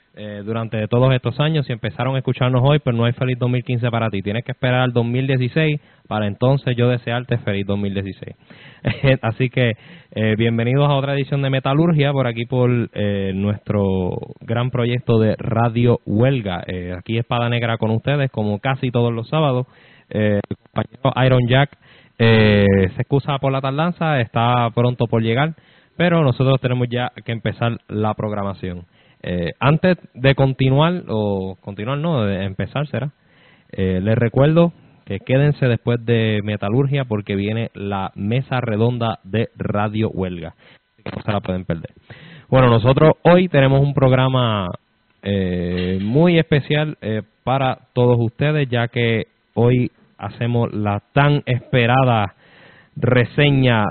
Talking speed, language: 150 wpm, Spanish